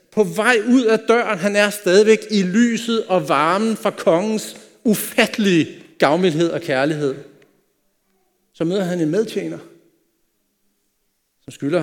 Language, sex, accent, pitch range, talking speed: Danish, male, native, 155-215 Hz, 125 wpm